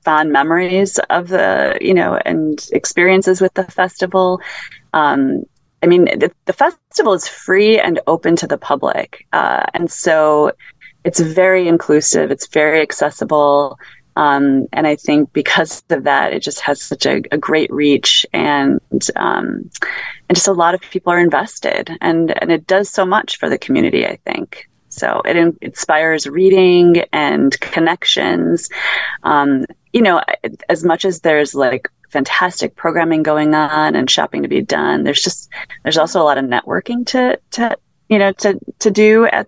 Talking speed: 165 wpm